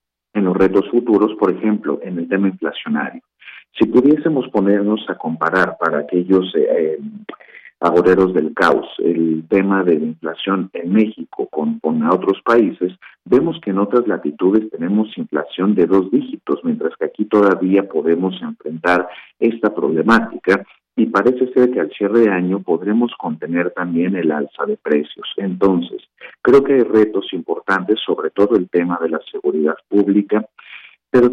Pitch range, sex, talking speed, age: 90-115 Hz, male, 155 wpm, 50-69